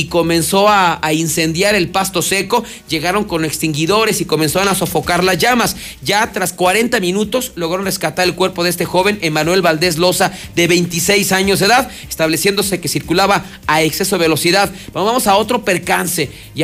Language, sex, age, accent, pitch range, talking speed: Spanish, male, 40-59, Mexican, 165-205 Hz, 170 wpm